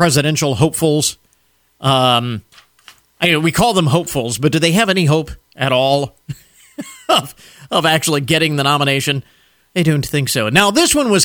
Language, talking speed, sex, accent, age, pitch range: English, 160 wpm, male, American, 40-59, 130-165 Hz